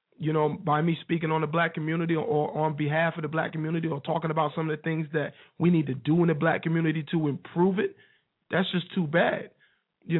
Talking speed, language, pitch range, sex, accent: 235 wpm, English, 160-190 Hz, male, American